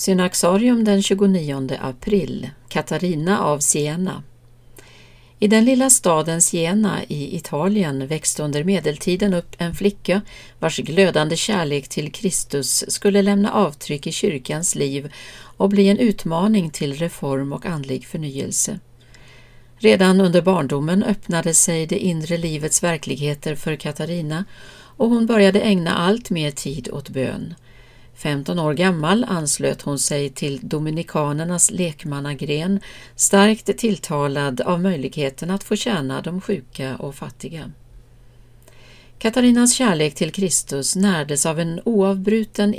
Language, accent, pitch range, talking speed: Swedish, native, 145-195 Hz, 125 wpm